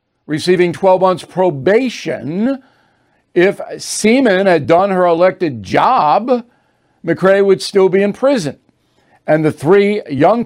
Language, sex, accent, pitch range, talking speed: English, male, American, 160-200 Hz, 120 wpm